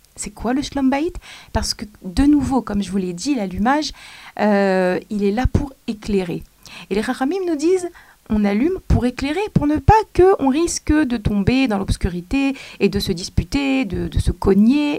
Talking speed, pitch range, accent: 190 wpm, 185-275 Hz, French